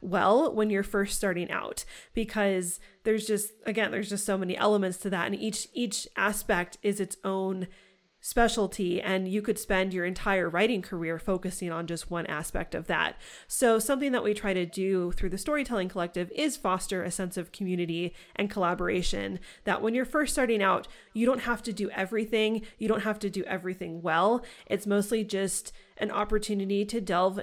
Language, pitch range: English, 185-215 Hz